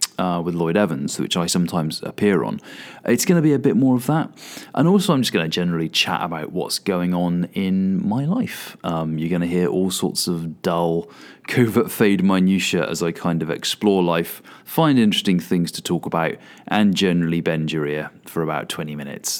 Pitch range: 85-130 Hz